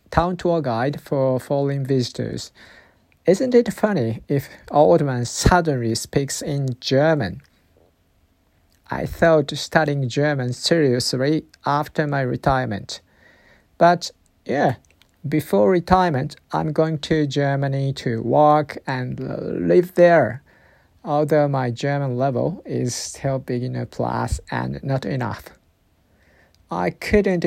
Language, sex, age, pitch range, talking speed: English, male, 50-69, 125-155 Hz, 110 wpm